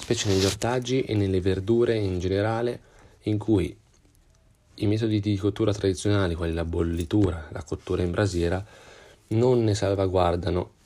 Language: Italian